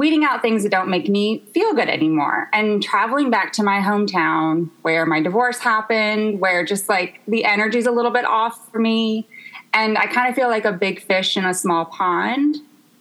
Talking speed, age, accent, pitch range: 205 wpm, 20-39, American, 185-245 Hz